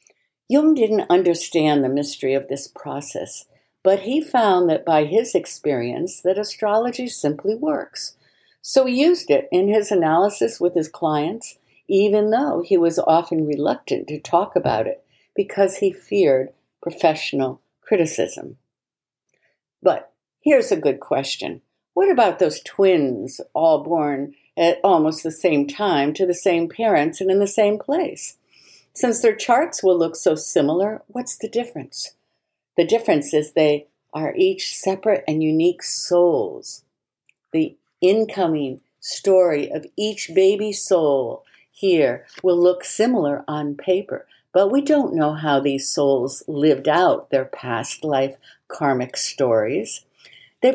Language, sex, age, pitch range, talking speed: English, female, 60-79, 155-235 Hz, 140 wpm